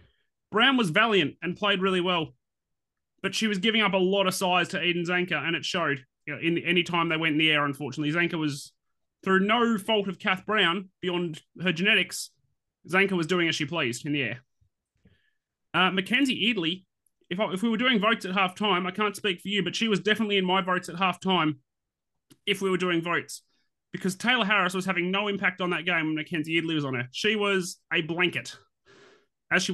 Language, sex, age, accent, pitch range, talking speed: English, male, 30-49, Australian, 165-195 Hz, 220 wpm